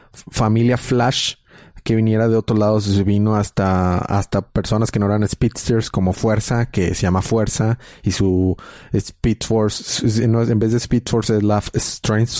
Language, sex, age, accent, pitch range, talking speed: Spanish, male, 30-49, Mexican, 100-120 Hz, 165 wpm